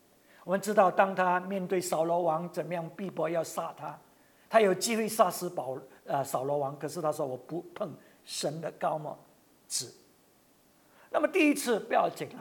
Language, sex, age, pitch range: English, male, 50-69, 185-275 Hz